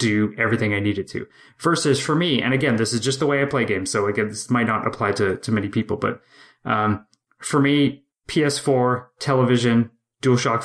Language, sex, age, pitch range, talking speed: English, male, 20-39, 110-125 Hz, 195 wpm